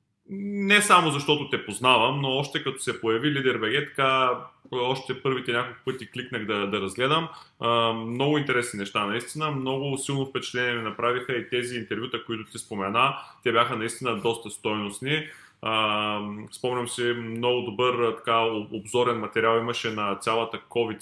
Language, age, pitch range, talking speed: Bulgarian, 20-39, 105-130 Hz, 150 wpm